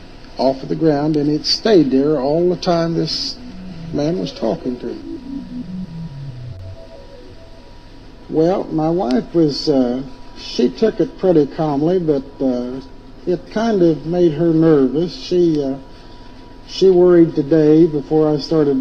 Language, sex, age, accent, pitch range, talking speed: English, male, 60-79, American, 130-165 Hz, 130 wpm